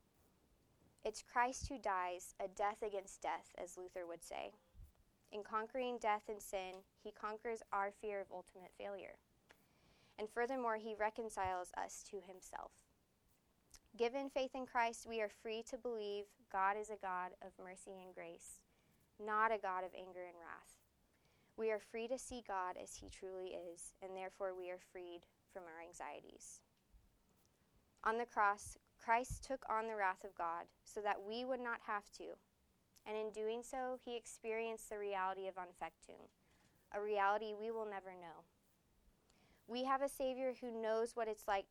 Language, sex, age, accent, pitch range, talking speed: English, female, 20-39, American, 185-225 Hz, 165 wpm